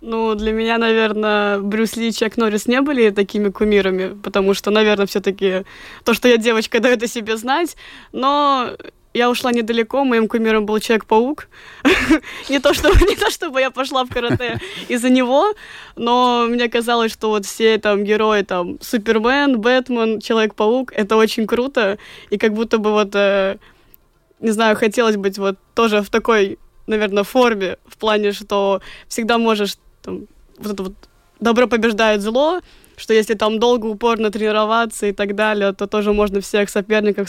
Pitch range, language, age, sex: 205-240 Hz, Russian, 20-39, female